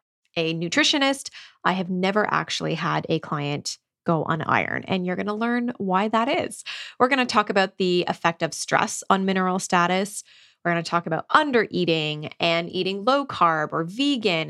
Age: 20-39